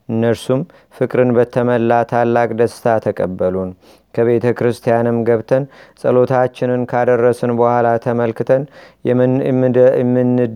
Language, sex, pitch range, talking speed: Amharic, male, 115-125 Hz, 85 wpm